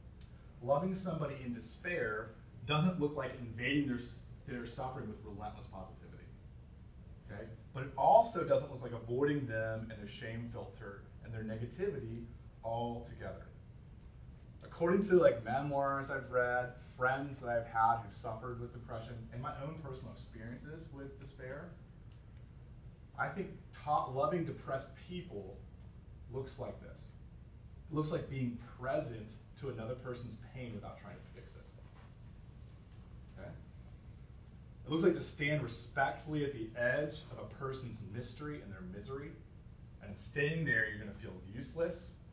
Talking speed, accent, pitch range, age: 140 wpm, American, 110-135 Hz, 30-49